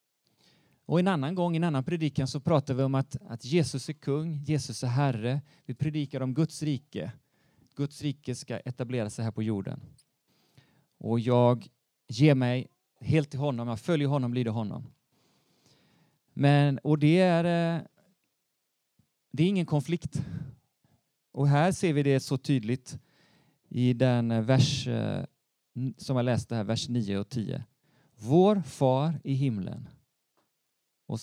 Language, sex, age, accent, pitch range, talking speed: Swedish, male, 30-49, native, 120-150 Hz, 145 wpm